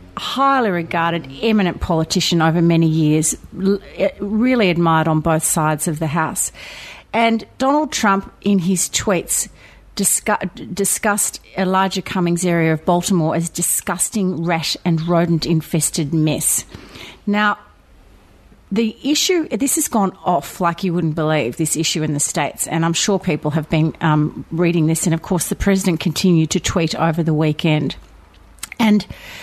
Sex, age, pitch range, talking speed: female, 40-59, 165-205 Hz, 150 wpm